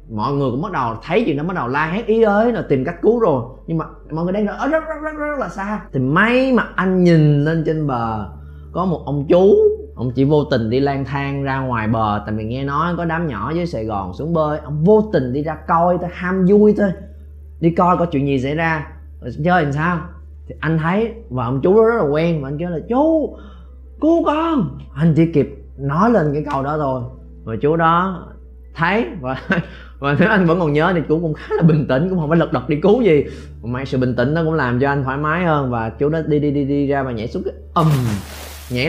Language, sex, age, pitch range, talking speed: Vietnamese, male, 20-39, 115-170 Hz, 255 wpm